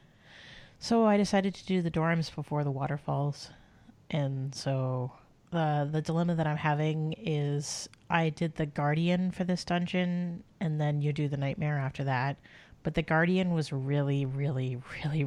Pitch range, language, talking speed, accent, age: 140-170 Hz, English, 165 wpm, American, 30-49